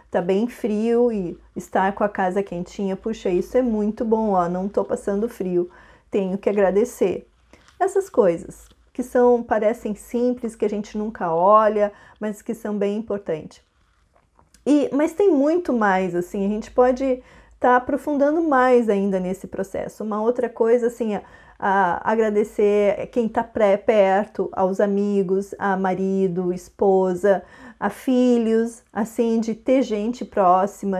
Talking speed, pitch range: 145 wpm, 195-245 Hz